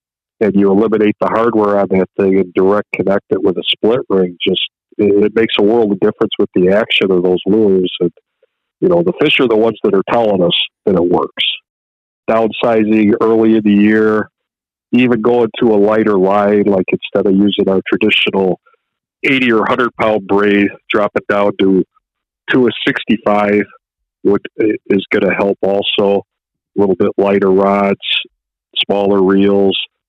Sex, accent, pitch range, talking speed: male, American, 100-110 Hz, 170 wpm